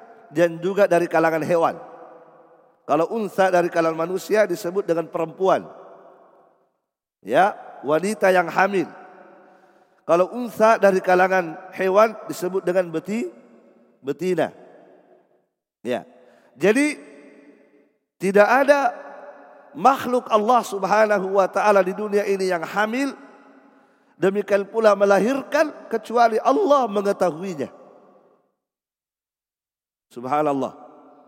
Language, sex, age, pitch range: Indonesian, male, 40-59, 175-215 Hz